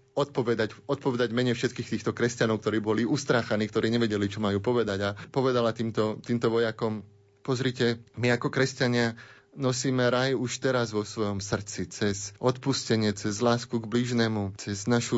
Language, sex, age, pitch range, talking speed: Slovak, male, 30-49, 110-125 Hz, 150 wpm